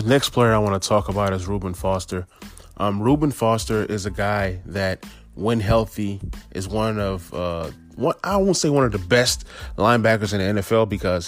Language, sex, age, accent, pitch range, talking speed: English, male, 20-39, American, 95-120 Hz, 190 wpm